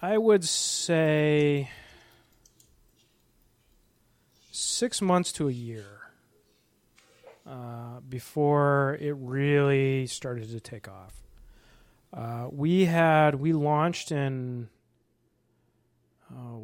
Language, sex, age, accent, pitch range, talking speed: English, male, 30-49, American, 120-155 Hz, 85 wpm